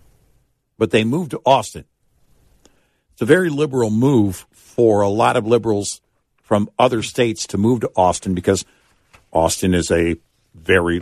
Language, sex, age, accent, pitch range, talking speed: English, male, 60-79, American, 95-120 Hz, 145 wpm